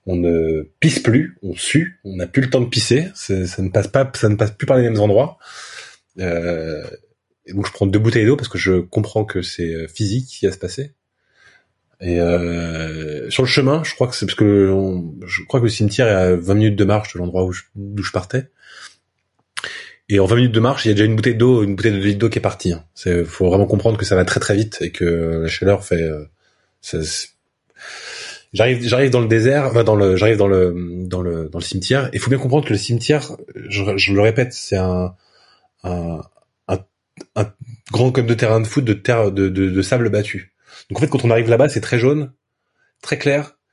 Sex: male